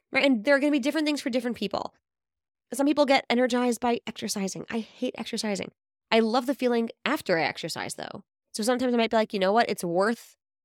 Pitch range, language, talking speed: 185-245 Hz, English, 220 wpm